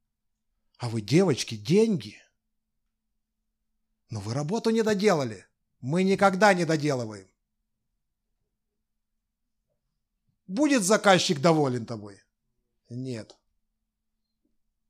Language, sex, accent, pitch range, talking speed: Russian, male, native, 110-185 Hz, 75 wpm